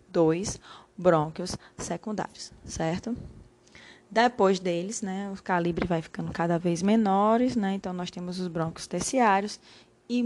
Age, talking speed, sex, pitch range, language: 10-29, 130 wpm, female, 175-200 Hz, Portuguese